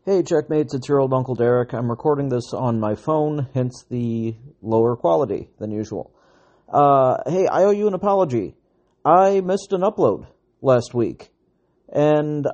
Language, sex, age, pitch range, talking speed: English, male, 40-59, 125-165 Hz, 160 wpm